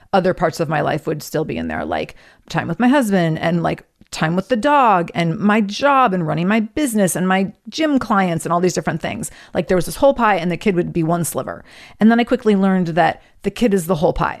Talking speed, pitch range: 260 wpm, 170-225 Hz